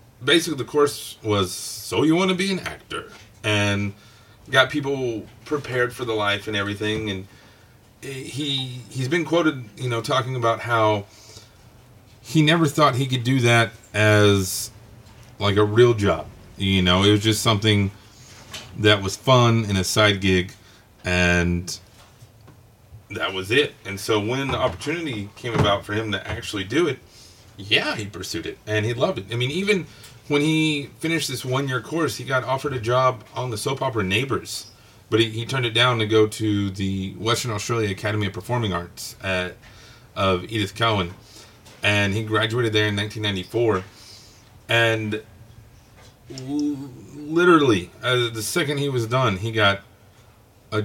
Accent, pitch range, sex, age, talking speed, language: American, 105-125 Hz, male, 40-59, 160 wpm, English